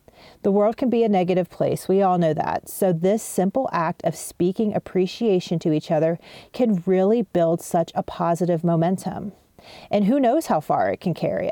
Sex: female